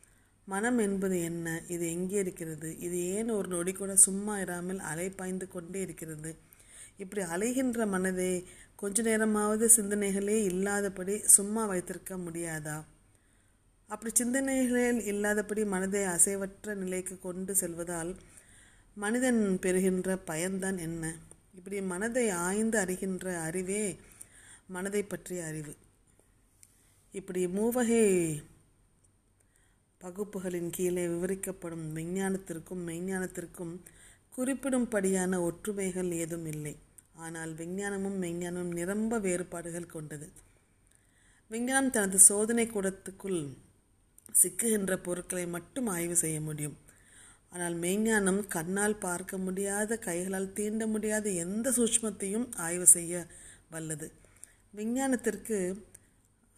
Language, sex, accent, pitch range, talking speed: Tamil, female, native, 165-205 Hz, 90 wpm